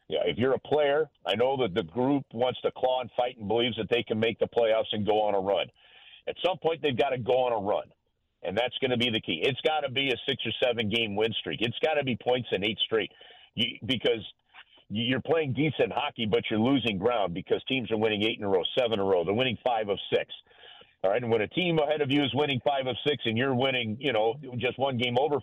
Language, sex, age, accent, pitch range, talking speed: English, male, 50-69, American, 115-150 Hz, 265 wpm